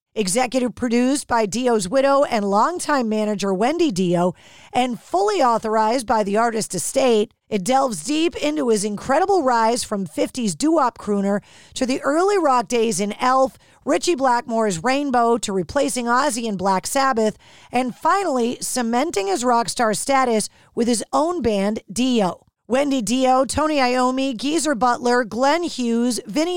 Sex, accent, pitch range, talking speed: female, American, 220-280 Hz, 145 wpm